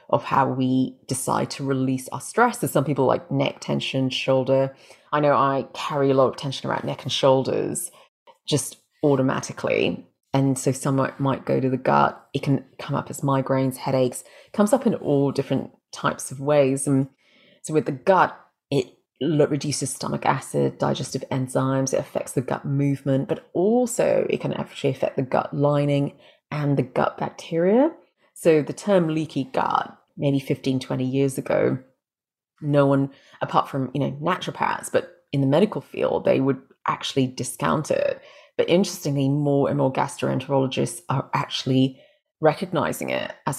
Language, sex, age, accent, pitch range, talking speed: English, female, 30-49, British, 135-145 Hz, 165 wpm